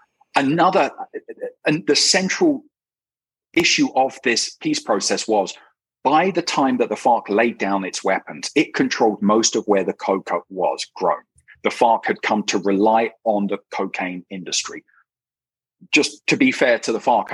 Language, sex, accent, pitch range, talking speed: English, male, British, 100-155 Hz, 160 wpm